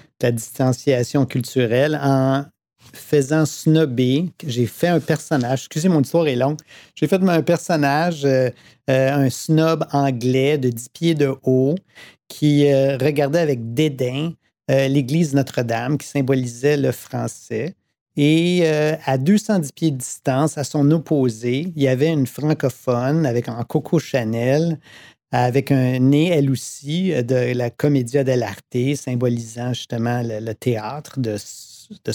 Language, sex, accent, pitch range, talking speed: French, male, Canadian, 125-155 Hz, 140 wpm